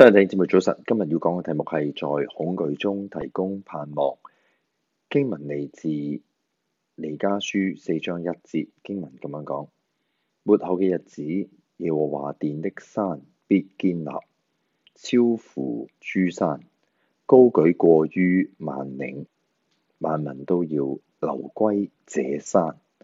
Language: Chinese